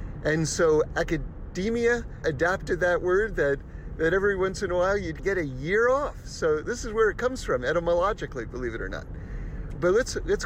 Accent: American